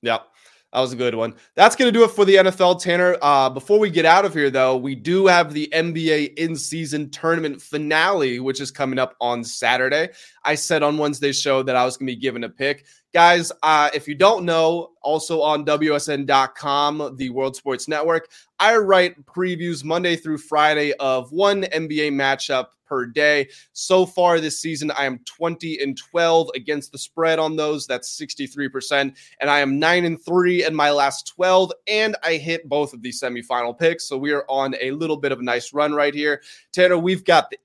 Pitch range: 140-165 Hz